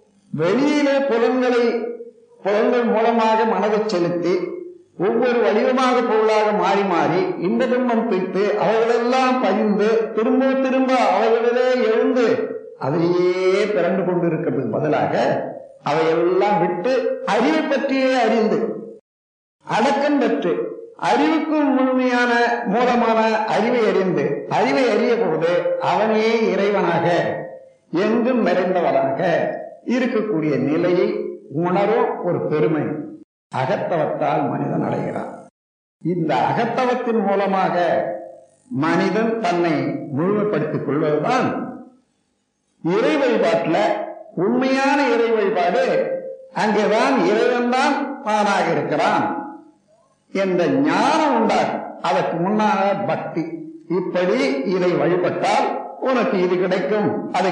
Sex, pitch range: male, 185-260 Hz